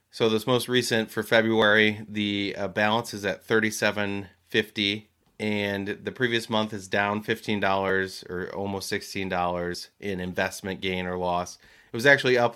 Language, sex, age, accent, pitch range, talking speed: English, male, 30-49, American, 95-110 Hz, 165 wpm